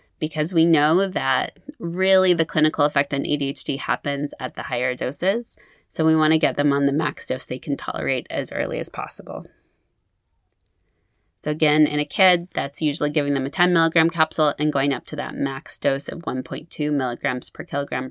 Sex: female